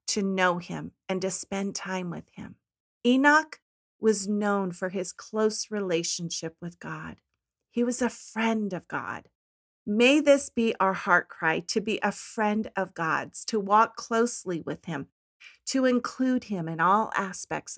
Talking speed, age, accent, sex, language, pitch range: 160 wpm, 40-59, American, female, English, 180-230 Hz